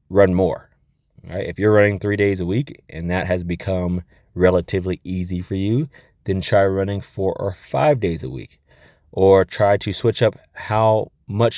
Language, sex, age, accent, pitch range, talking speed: English, male, 20-39, American, 95-120 Hz, 175 wpm